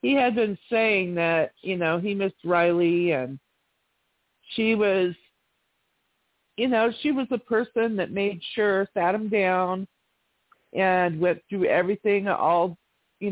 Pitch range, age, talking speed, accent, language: 165-200 Hz, 50-69, 140 wpm, American, English